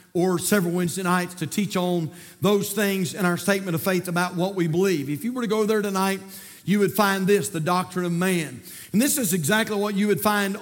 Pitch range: 175-215 Hz